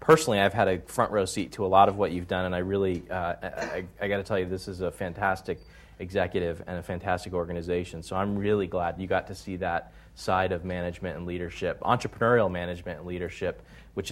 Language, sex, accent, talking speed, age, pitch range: English, male, American, 215 wpm, 30-49, 90-105 Hz